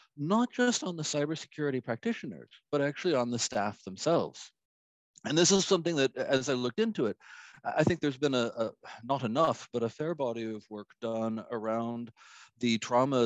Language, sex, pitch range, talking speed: English, male, 105-140 Hz, 180 wpm